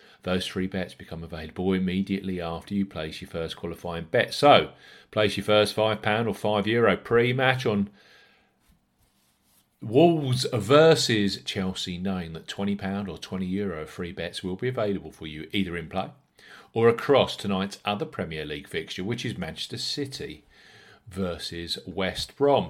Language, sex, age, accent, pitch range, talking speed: English, male, 40-59, British, 95-120 Hz, 150 wpm